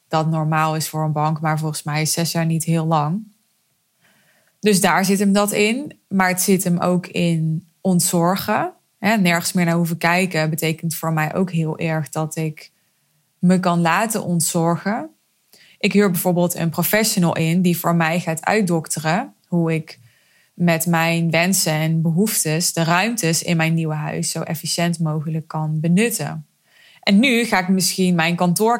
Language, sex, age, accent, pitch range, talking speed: Dutch, female, 20-39, Dutch, 160-185 Hz, 170 wpm